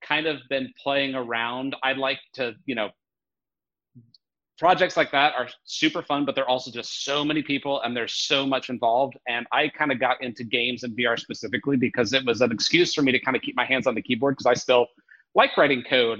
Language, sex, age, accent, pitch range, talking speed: English, male, 30-49, American, 125-145 Hz, 220 wpm